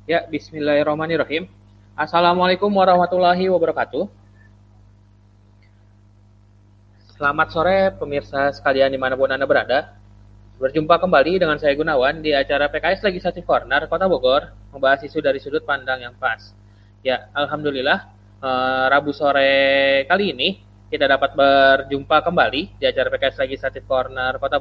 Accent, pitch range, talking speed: native, 100-155 Hz, 115 wpm